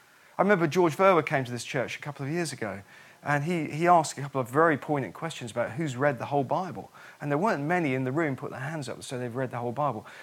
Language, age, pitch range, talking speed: English, 40-59, 135-180 Hz, 270 wpm